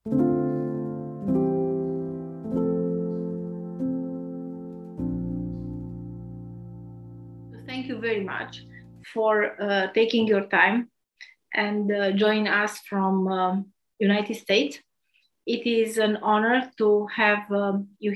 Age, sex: 30-49, female